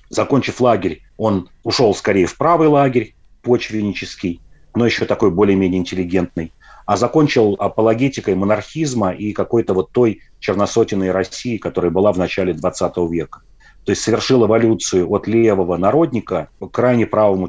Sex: male